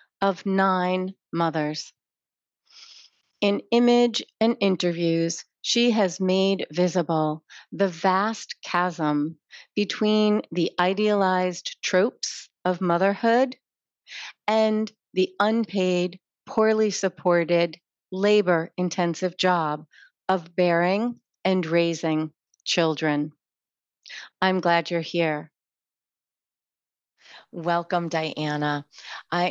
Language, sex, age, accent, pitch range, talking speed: English, female, 40-59, American, 150-190 Hz, 80 wpm